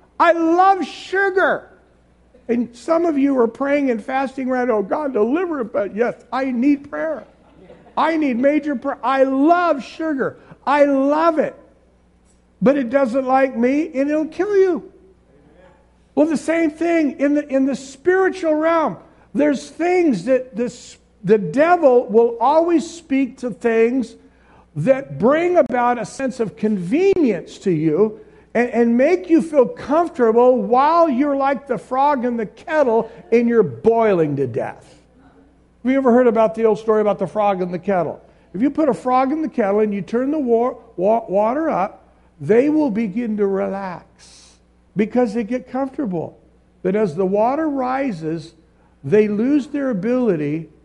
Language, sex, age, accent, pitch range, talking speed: English, male, 50-69, American, 210-290 Hz, 160 wpm